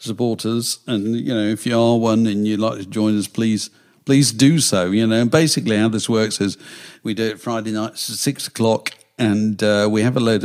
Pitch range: 105-150 Hz